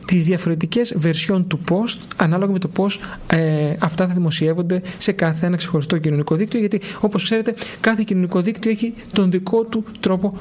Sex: male